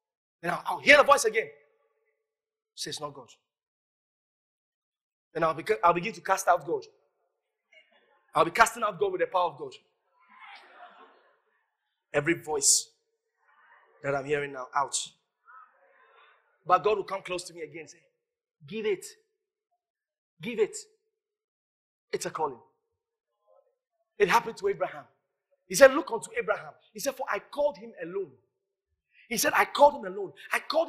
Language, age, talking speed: English, 30-49, 150 wpm